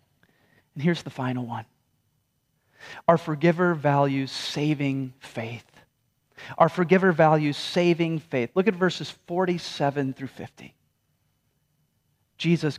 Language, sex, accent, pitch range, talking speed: English, male, American, 125-170 Hz, 105 wpm